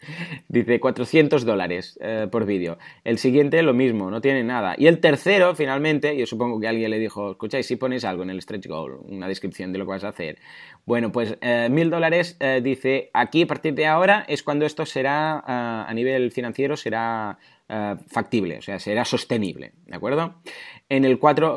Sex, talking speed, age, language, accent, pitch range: male, 200 wpm, 20-39, Spanish, Spanish, 110-145 Hz